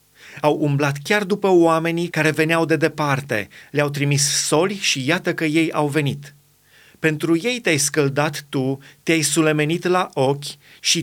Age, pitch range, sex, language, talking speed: 30-49, 145-170 Hz, male, Romanian, 150 wpm